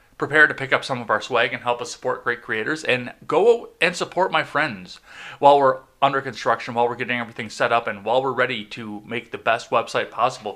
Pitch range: 115-160 Hz